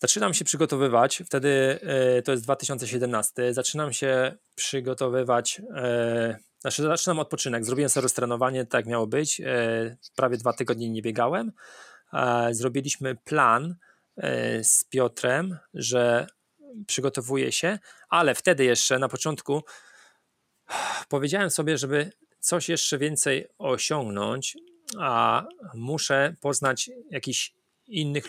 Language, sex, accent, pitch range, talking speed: Polish, male, native, 120-145 Hz, 100 wpm